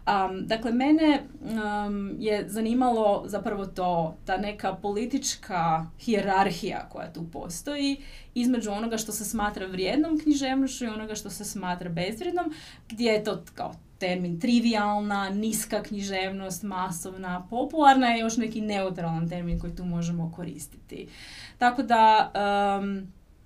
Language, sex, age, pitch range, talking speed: Croatian, female, 30-49, 180-220 Hz, 130 wpm